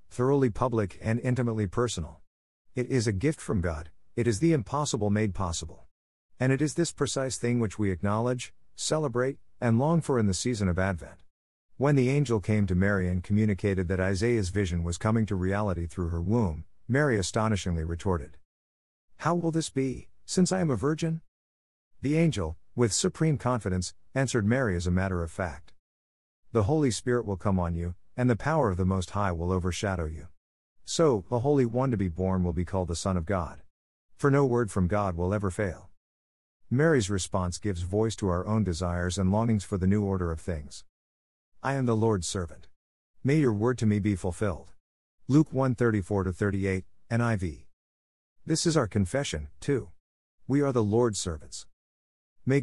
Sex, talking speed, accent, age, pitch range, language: male, 180 wpm, American, 50-69, 85-120 Hz, English